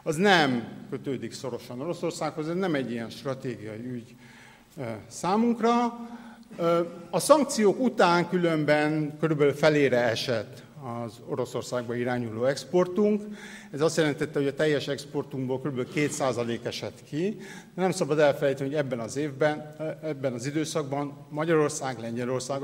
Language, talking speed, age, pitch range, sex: Hungarian, 125 wpm, 50-69, 125-170 Hz, male